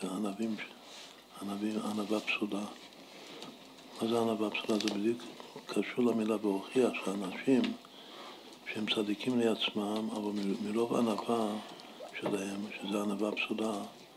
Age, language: 60-79, Hebrew